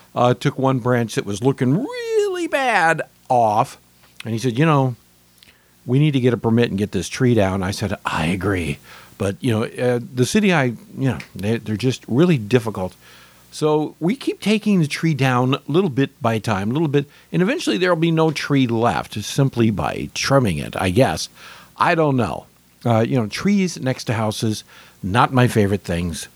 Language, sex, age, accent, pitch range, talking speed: English, male, 50-69, American, 105-145 Hz, 195 wpm